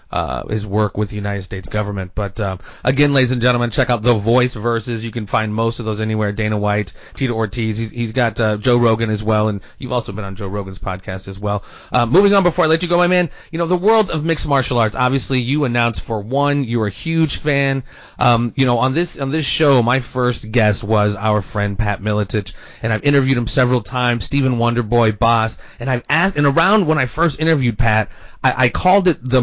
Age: 30-49